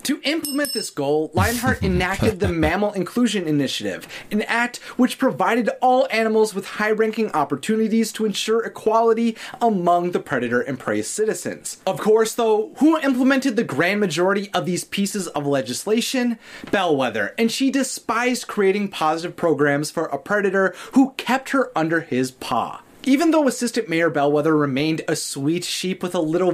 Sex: male